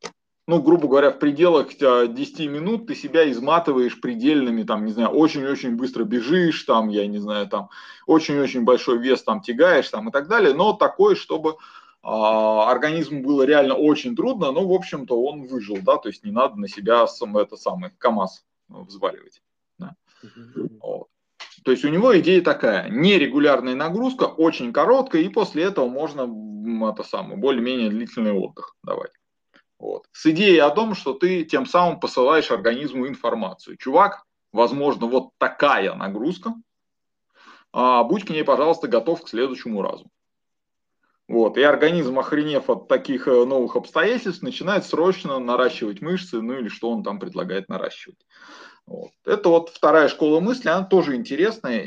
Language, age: Russian, 20-39